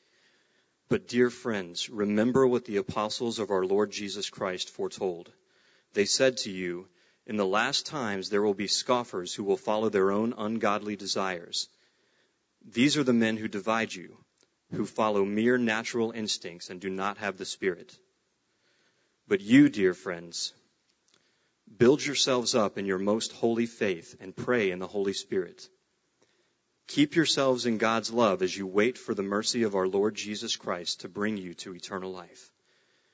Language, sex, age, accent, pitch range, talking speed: English, male, 30-49, American, 100-120 Hz, 165 wpm